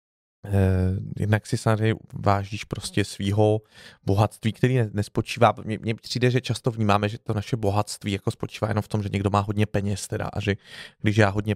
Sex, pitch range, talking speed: male, 100-110 Hz, 185 wpm